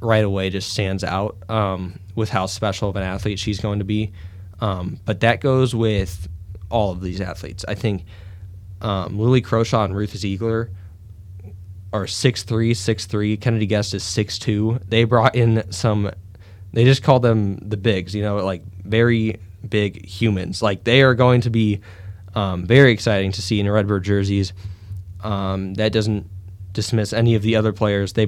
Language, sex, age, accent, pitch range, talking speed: English, male, 10-29, American, 95-110 Hz, 175 wpm